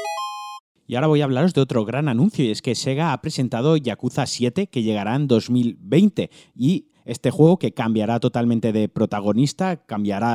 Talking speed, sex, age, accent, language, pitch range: 175 wpm, male, 30-49, Spanish, Spanish, 110-135 Hz